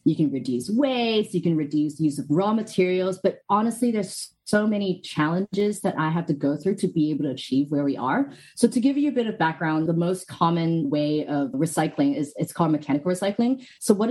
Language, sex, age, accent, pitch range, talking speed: English, female, 20-39, American, 155-220 Hz, 220 wpm